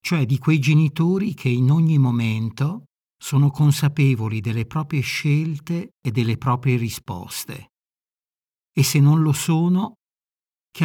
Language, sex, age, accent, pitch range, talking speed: Italian, male, 60-79, native, 120-150 Hz, 125 wpm